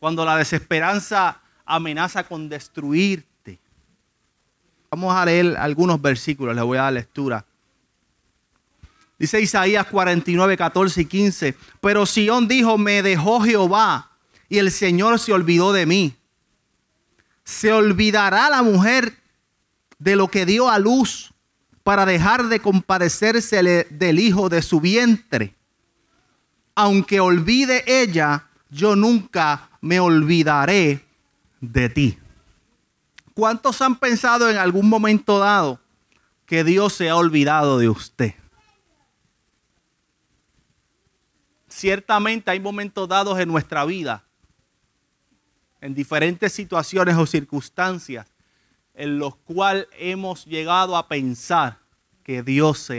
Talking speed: 110 wpm